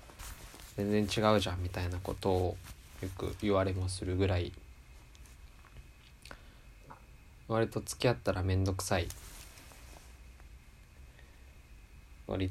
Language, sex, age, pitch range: Japanese, male, 20-39, 70-95 Hz